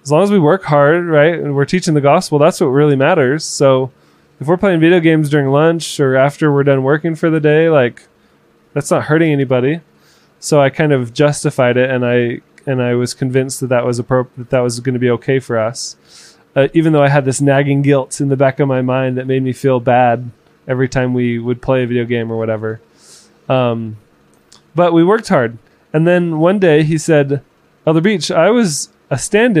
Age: 20-39